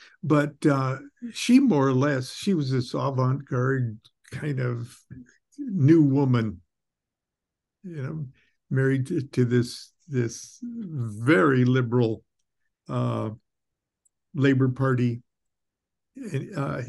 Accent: American